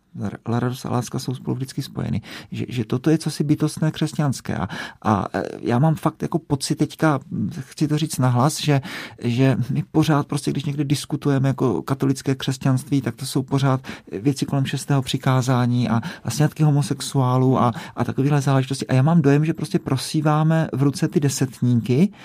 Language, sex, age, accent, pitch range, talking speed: Czech, male, 40-59, native, 130-155 Hz, 175 wpm